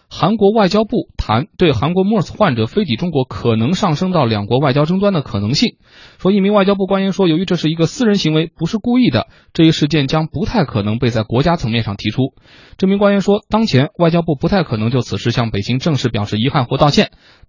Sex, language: male, Chinese